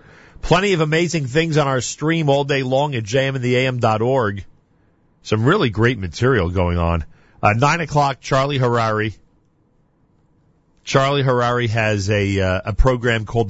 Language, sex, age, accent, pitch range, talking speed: English, male, 40-59, American, 105-135 Hz, 140 wpm